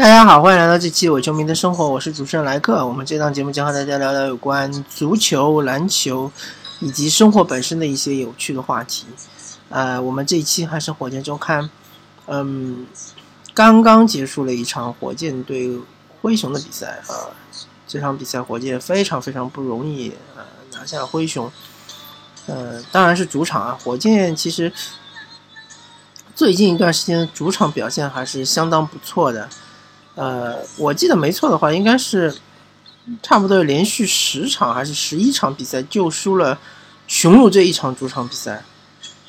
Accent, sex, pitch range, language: native, male, 130-180 Hz, Chinese